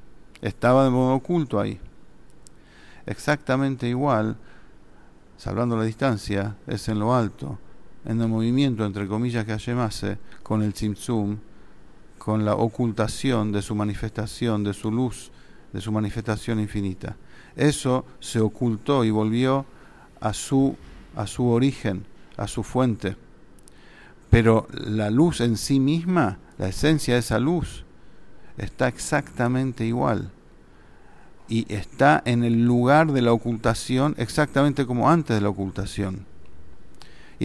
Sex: male